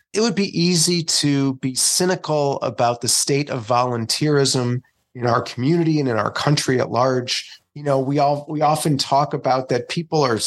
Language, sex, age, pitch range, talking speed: English, male, 30-49, 125-155 Hz, 185 wpm